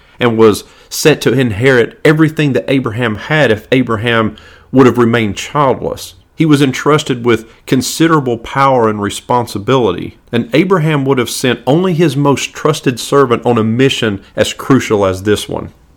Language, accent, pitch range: English, American, 110-145 Hz